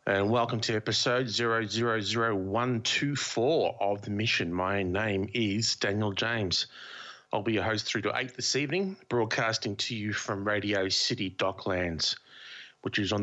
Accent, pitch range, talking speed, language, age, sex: Australian, 95-125 Hz, 170 wpm, English, 30-49, male